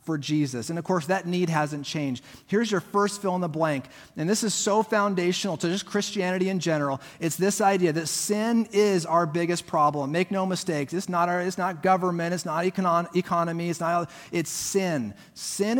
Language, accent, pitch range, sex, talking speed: English, American, 160-195 Hz, male, 200 wpm